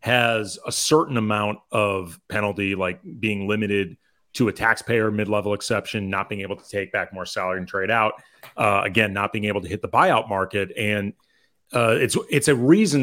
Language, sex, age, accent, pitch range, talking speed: English, male, 30-49, American, 100-125 Hz, 190 wpm